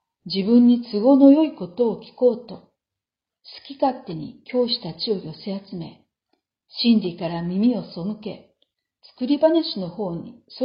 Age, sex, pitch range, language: 50-69, female, 175-230 Hz, Japanese